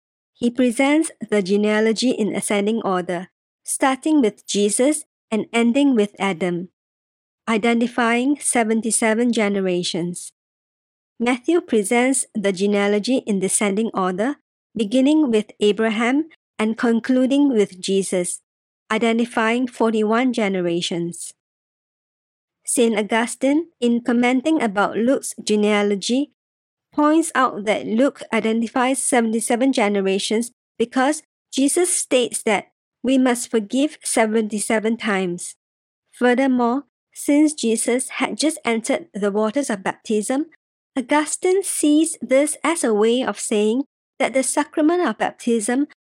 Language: English